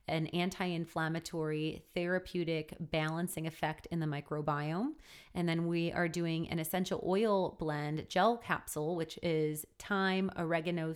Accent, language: American, English